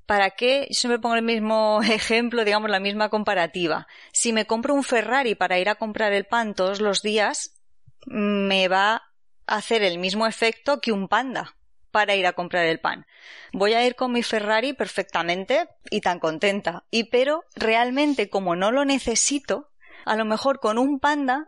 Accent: Spanish